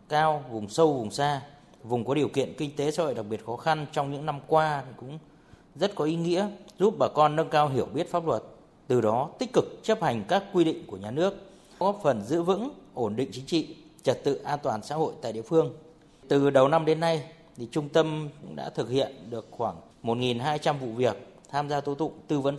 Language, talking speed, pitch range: Vietnamese, 230 wpm, 135-165 Hz